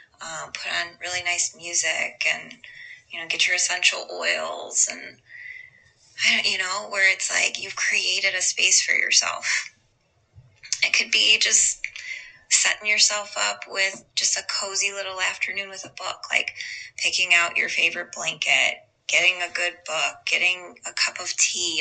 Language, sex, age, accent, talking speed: English, female, 20-39, American, 155 wpm